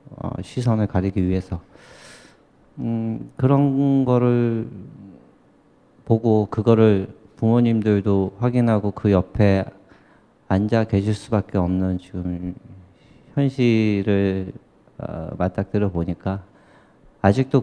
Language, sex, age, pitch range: Korean, male, 40-59, 100-120 Hz